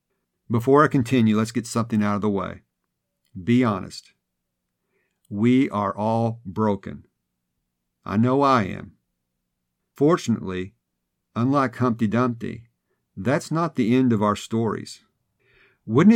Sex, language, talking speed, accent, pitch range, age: male, English, 120 wpm, American, 105-130 Hz, 50-69